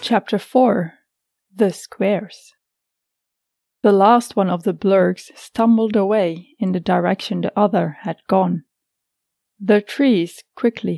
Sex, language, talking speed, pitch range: female, English, 120 wpm, 185-240 Hz